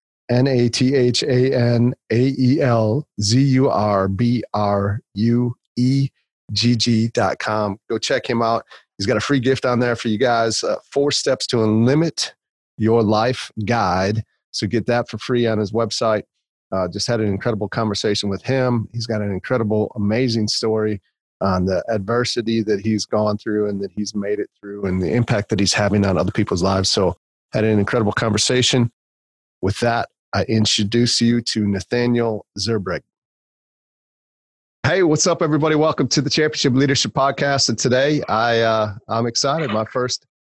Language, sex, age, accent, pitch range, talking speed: English, male, 30-49, American, 100-120 Hz, 150 wpm